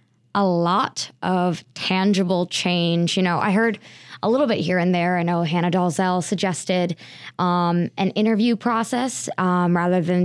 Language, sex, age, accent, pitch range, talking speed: English, female, 20-39, American, 165-190 Hz, 160 wpm